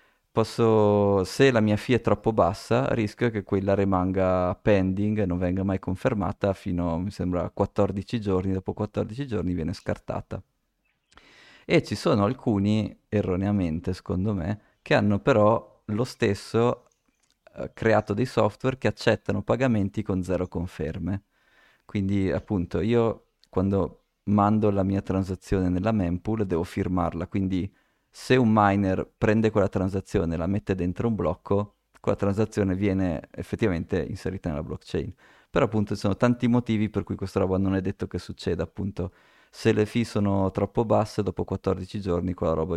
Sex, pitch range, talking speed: male, 95-110 Hz, 155 wpm